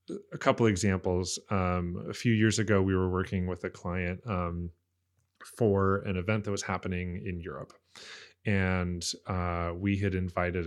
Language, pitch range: English, 90-105 Hz